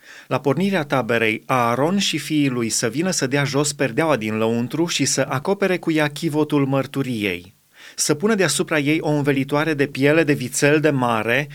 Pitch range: 135-165 Hz